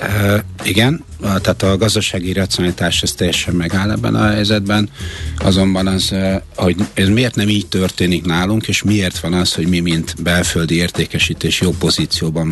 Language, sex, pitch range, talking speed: Hungarian, male, 80-95 Hz, 160 wpm